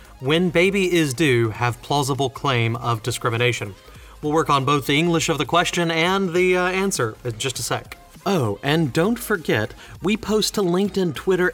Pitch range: 125-170 Hz